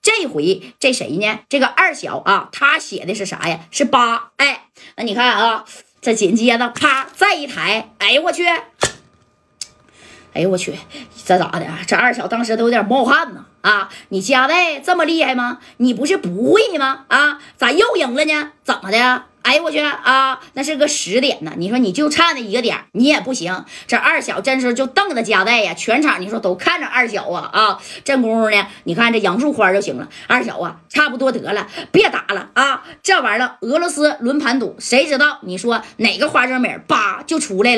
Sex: female